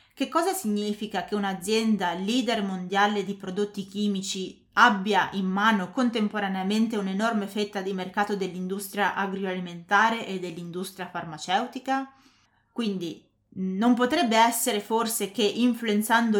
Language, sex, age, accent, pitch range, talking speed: Italian, female, 20-39, native, 180-220 Hz, 110 wpm